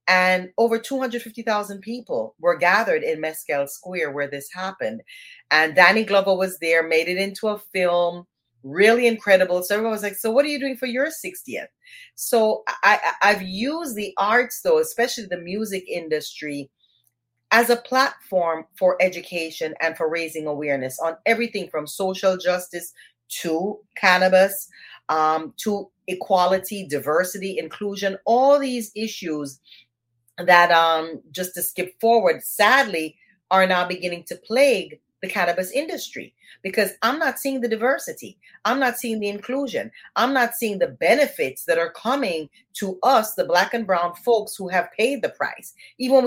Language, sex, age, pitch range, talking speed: English, female, 30-49, 175-230 Hz, 155 wpm